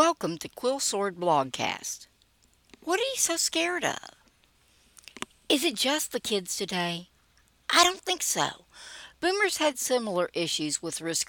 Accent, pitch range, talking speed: American, 155-250 Hz, 145 wpm